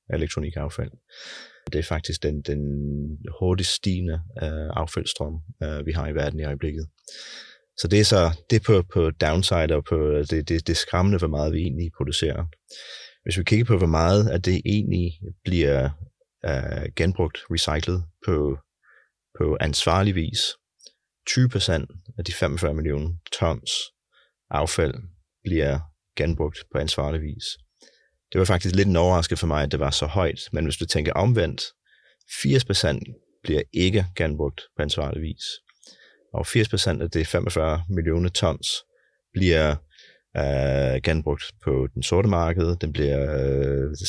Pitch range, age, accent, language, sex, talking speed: 75-90 Hz, 30-49, native, Danish, male, 145 wpm